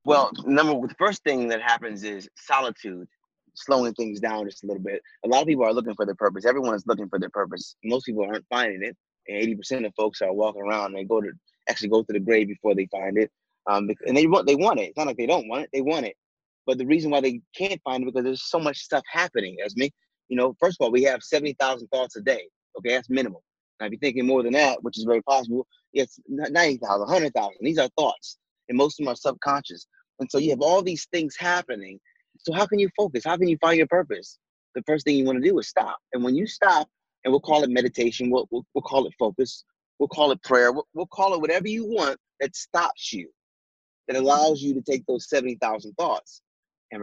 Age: 20-39